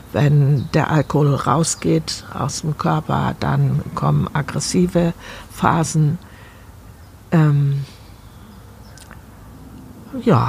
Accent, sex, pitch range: German, female, 100-170 Hz